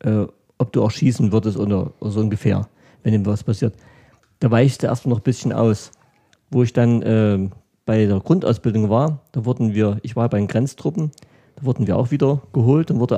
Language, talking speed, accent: German, 195 wpm, German